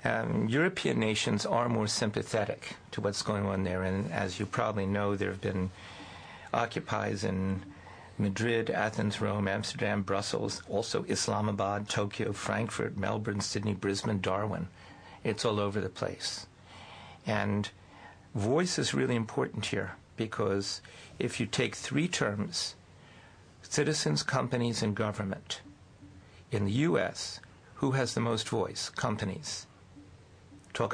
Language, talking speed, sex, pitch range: English, 125 wpm, male, 95-110 Hz